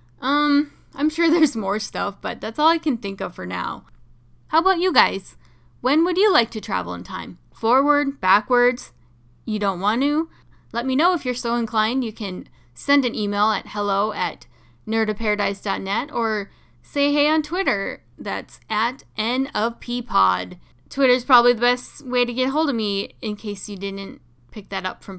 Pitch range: 200-275 Hz